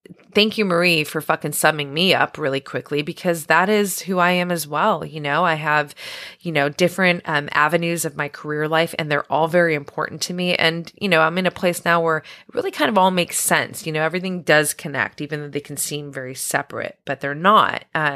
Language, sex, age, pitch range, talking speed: English, female, 20-39, 160-195 Hz, 230 wpm